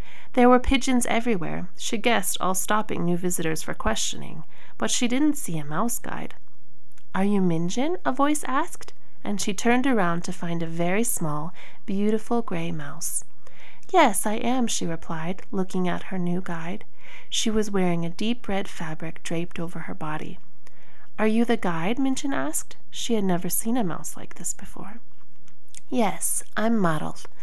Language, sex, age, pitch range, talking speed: English, female, 30-49, 170-235 Hz, 165 wpm